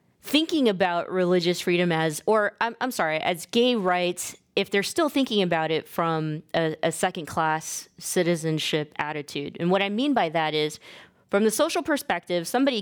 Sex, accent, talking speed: female, American, 170 wpm